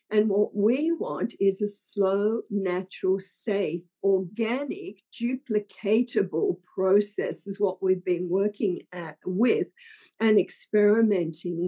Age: 50-69